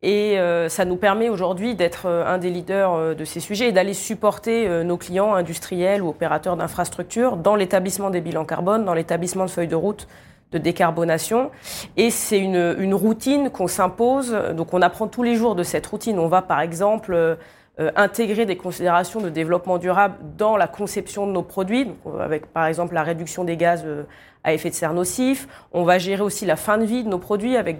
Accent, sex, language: French, female, French